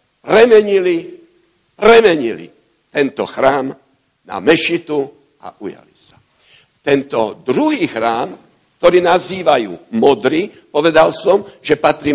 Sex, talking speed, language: male, 95 wpm, Slovak